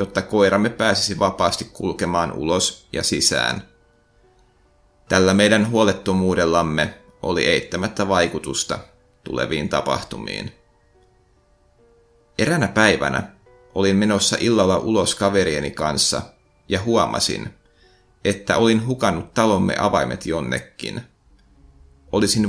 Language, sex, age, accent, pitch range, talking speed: Finnish, male, 30-49, native, 90-110 Hz, 90 wpm